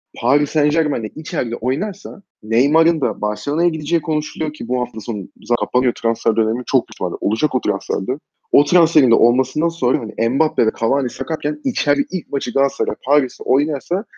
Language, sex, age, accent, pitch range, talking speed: Turkish, male, 30-49, native, 115-160 Hz, 155 wpm